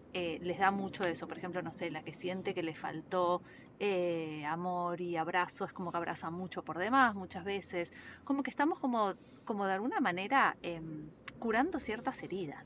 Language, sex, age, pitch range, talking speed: Spanish, female, 20-39, 165-205 Hz, 190 wpm